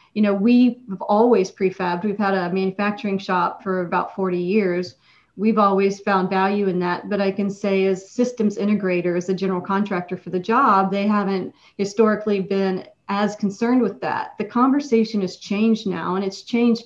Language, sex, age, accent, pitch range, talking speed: English, female, 40-59, American, 185-210 Hz, 175 wpm